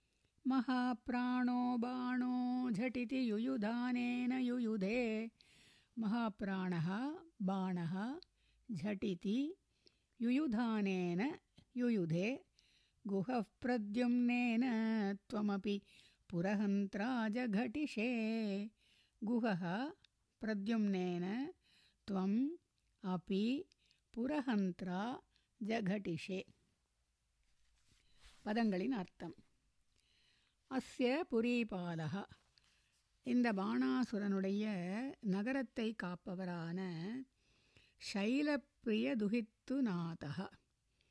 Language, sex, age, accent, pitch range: Tamil, female, 60-79, native, 195-245 Hz